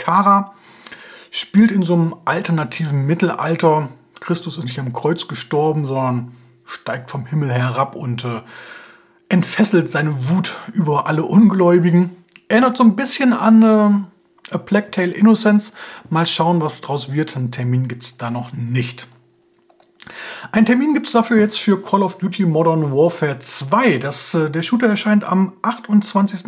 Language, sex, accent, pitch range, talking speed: German, male, German, 145-210 Hz, 155 wpm